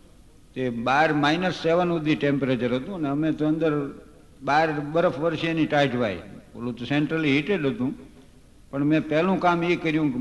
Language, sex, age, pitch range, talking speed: Gujarati, male, 60-79, 135-185 Hz, 160 wpm